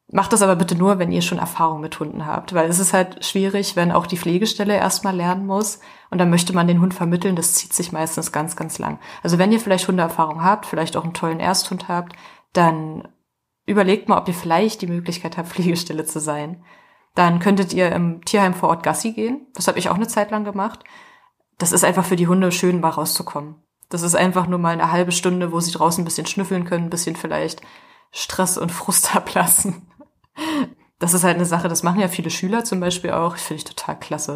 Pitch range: 170-195 Hz